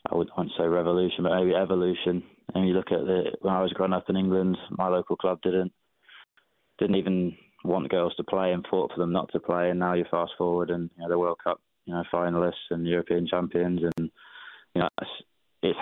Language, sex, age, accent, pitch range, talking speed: English, male, 20-39, British, 85-95 Hz, 225 wpm